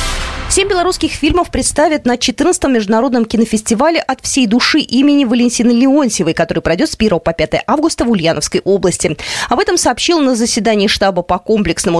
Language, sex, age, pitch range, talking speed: Russian, female, 20-39, 180-290 Hz, 160 wpm